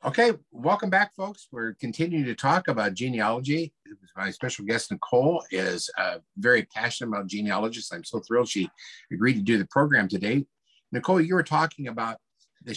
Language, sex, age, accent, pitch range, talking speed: English, male, 50-69, American, 105-145 Hz, 170 wpm